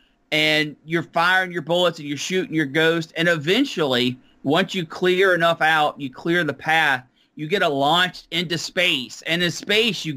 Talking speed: 185 wpm